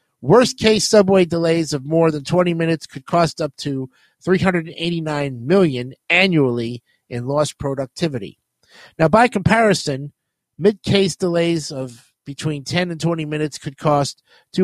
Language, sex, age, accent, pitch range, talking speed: English, male, 50-69, American, 140-180 Hz, 125 wpm